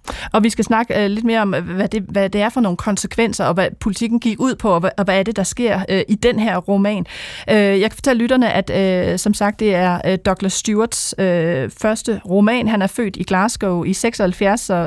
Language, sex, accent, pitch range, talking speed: Danish, female, native, 185-225 Hz, 210 wpm